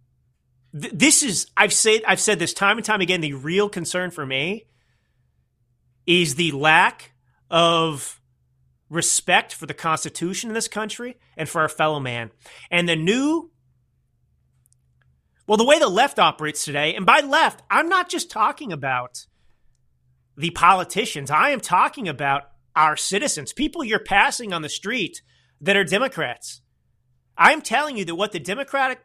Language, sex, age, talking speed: English, male, 30-49, 150 wpm